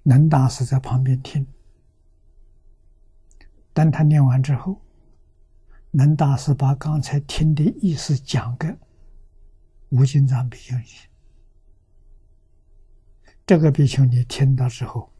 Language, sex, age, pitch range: Chinese, male, 60-79, 80-135 Hz